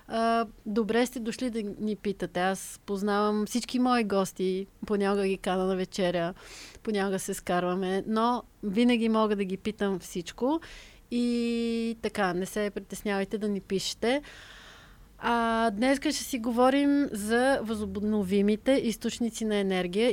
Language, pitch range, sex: Bulgarian, 200-230 Hz, female